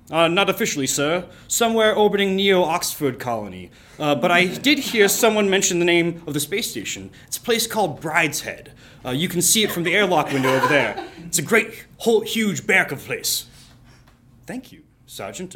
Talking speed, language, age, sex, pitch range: 185 wpm, English, 30-49, male, 120-165 Hz